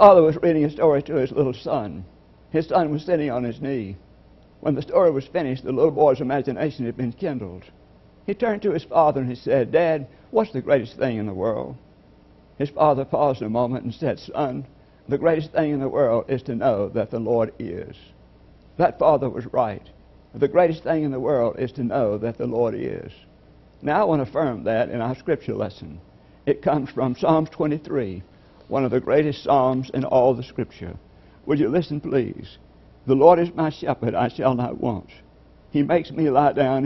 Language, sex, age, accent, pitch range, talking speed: English, male, 60-79, American, 115-155 Hz, 200 wpm